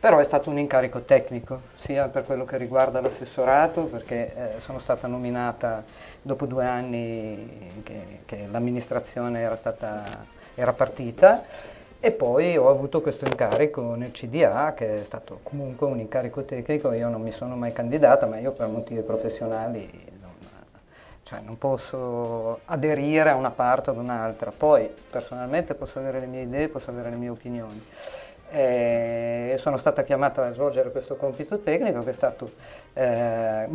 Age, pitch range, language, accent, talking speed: 40-59, 115-145 Hz, Italian, native, 155 wpm